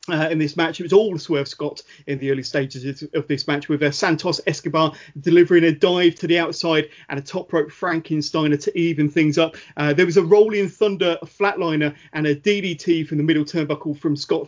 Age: 30-49